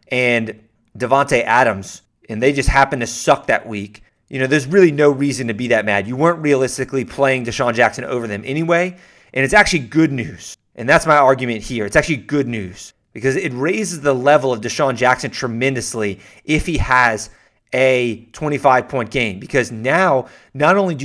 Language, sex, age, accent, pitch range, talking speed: English, male, 30-49, American, 120-155 Hz, 180 wpm